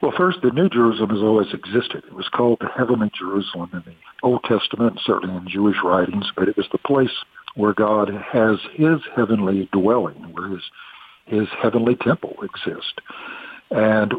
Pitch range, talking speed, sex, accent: 100-120 Hz, 170 wpm, male, American